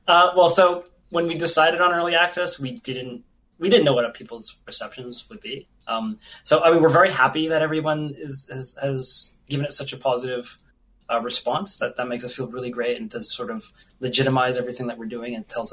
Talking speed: 215 wpm